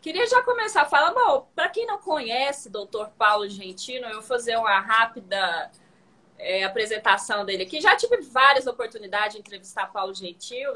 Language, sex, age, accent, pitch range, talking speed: Portuguese, female, 20-39, Brazilian, 210-310 Hz, 160 wpm